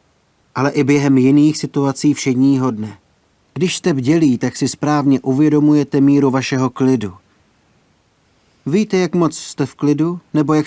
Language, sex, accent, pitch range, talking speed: Czech, male, native, 120-145 Hz, 140 wpm